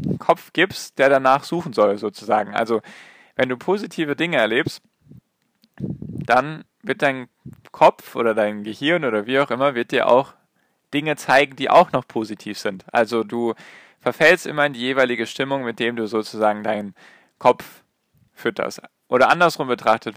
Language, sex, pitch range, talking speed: German, male, 110-150 Hz, 155 wpm